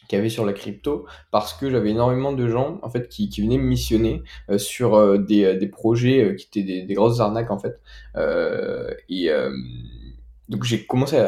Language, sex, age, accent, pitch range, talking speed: French, male, 20-39, French, 105-125 Hz, 220 wpm